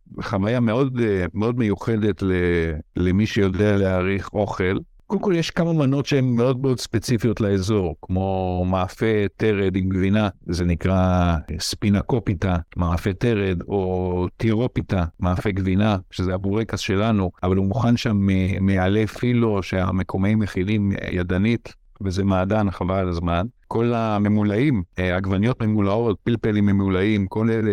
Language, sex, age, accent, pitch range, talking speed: Hebrew, male, 60-79, Italian, 95-115 Hz, 125 wpm